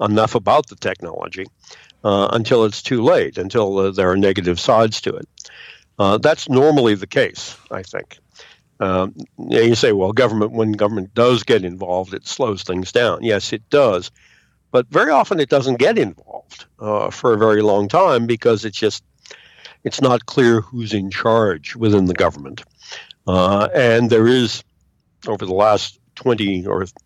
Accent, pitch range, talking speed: American, 95-120 Hz, 165 wpm